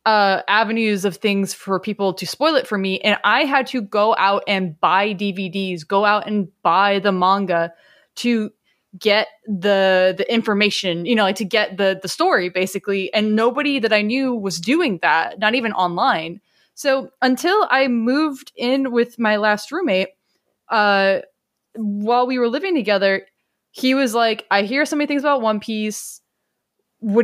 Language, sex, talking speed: English, female, 170 wpm